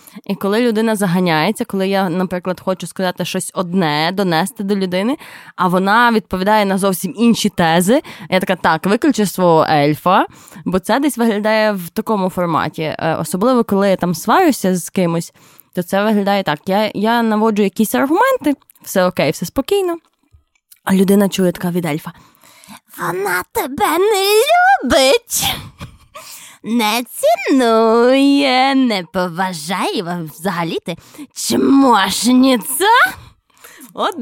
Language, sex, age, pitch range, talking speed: Ukrainian, female, 20-39, 180-235 Hz, 125 wpm